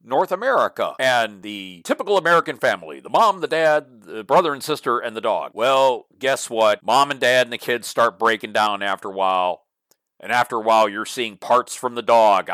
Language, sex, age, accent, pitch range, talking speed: English, male, 40-59, American, 100-125 Hz, 205 wpm